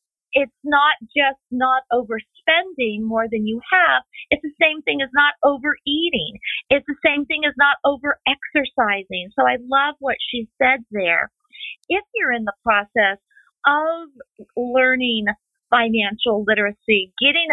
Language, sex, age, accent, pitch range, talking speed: English, female, 50-69, American, 220-290 Hz, 135 wpm